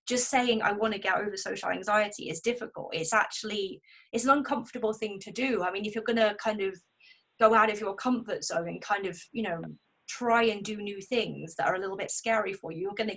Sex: female